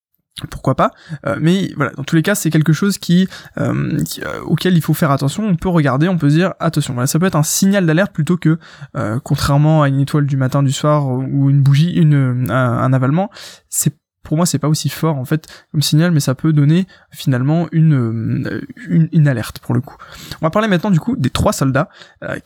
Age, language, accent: 20-39, French, French